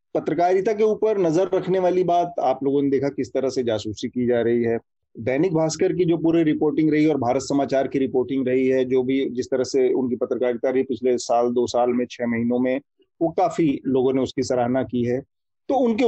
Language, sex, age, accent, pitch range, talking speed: Hindi, male, 30-49, native, 130-175 Hz, 220 wpm